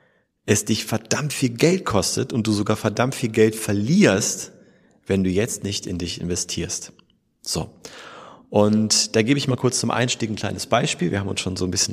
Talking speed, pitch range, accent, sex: 195 wpm, 95-125 Hz, German, male